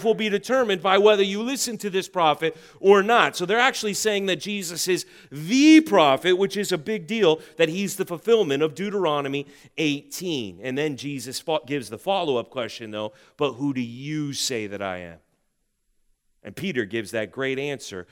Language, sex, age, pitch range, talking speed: English, male, 30-49, 140-205 Hz, 180 wpm